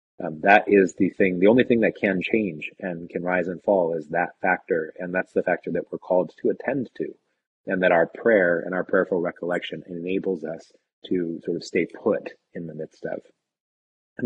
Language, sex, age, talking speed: English, male, 30-49, 205 wpm